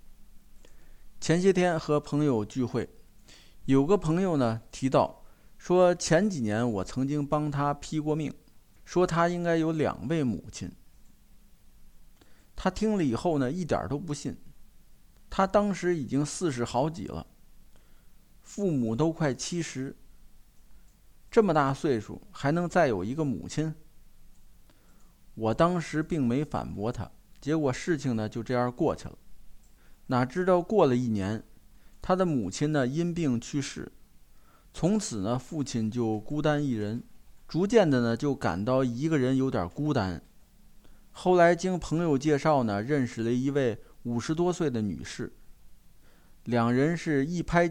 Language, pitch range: Chinese, 120-160 Hz